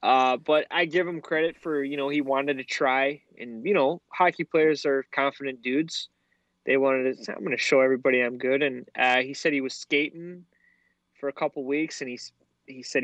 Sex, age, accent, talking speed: male, 20-39, American, 215 wpm